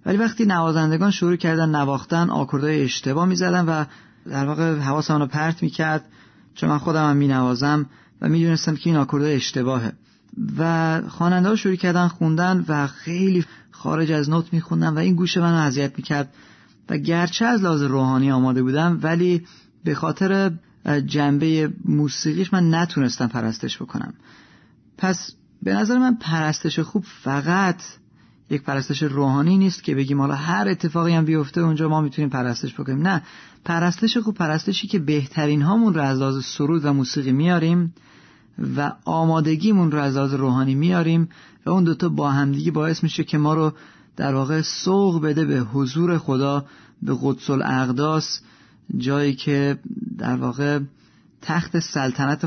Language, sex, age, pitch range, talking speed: Persian, male, 30-49, 140-175 Hz, 150 wpm